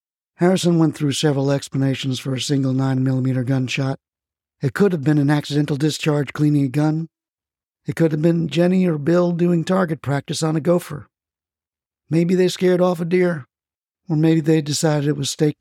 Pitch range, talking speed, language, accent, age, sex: 130-155 Hz, 175 wpm, English, American, 50-69, male